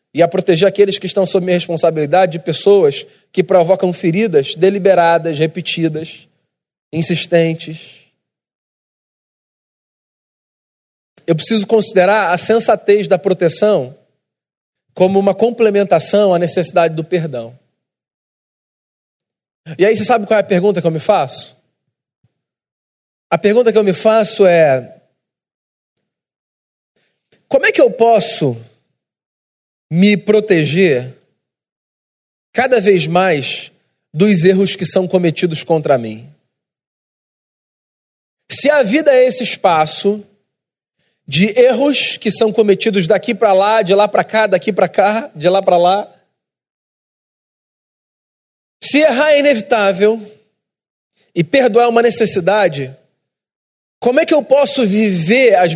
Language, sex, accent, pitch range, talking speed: Portuguese, male, Brazilian, 165-220 Hz, 115 wpm